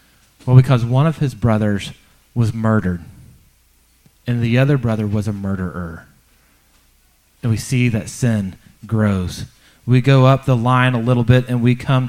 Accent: American